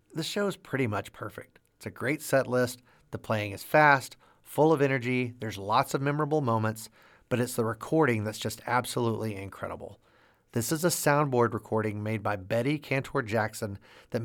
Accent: American